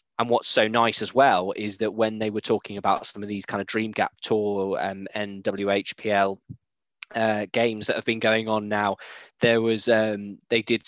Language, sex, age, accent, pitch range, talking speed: English, male, 10-29, British, 100-110 Hz, 205 wpm